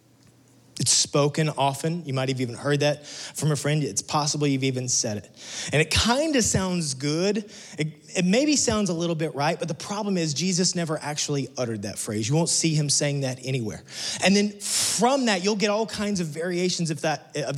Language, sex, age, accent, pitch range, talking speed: English, male, 30-49, American, 135-185 Hz, 210 wpm